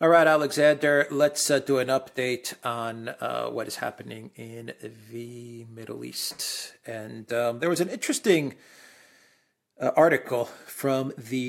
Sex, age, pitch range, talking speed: male, 40-59, 105-135 Hz, 140 wpm